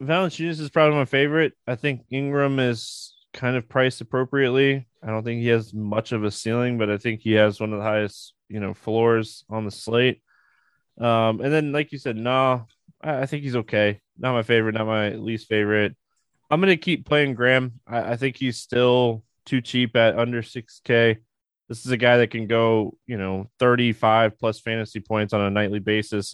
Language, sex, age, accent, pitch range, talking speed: English, male, 20-39, American, 110-135 Hz, 200 wpm